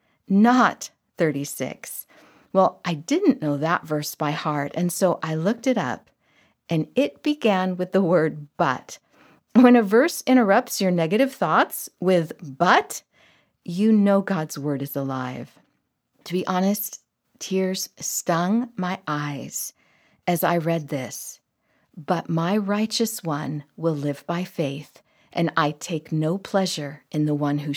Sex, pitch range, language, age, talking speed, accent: female, 150-210 Hz, English, 50-69, 145 wpm, American